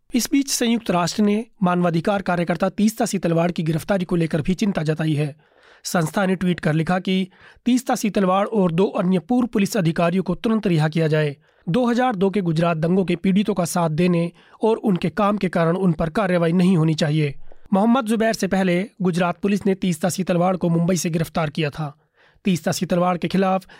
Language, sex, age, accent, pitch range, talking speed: Hindi, male, 30-49, native, 170-205 Hz, 190 wpm